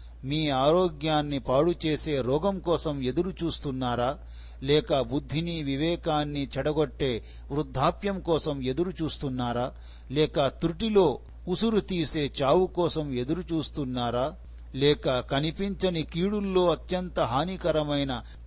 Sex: male